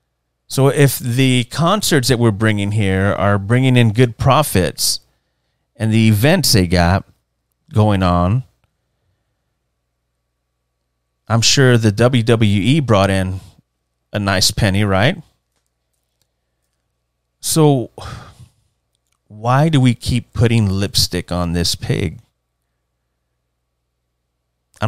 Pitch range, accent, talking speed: 85-130 Hz, American, 100 wpm